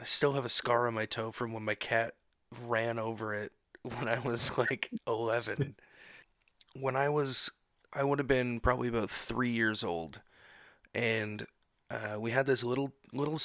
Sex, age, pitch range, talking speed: male, 30-49, 115-140 Hz, 175 wpm